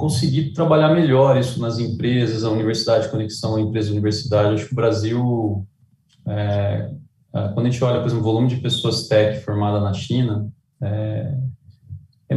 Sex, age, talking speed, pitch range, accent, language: male, 20-39, 170 wpm, 110-150 Hz, Brazilian, English